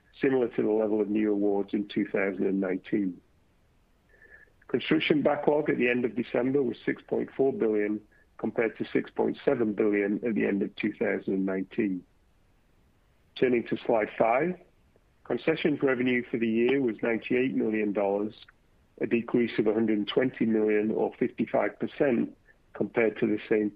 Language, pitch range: English, 105-120 Hz